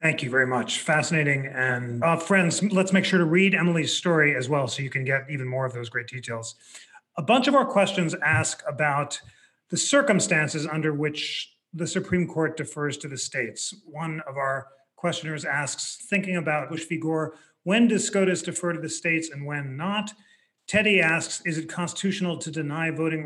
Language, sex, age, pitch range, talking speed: English, male, 30-49, 145-180 Hz, 190 wpm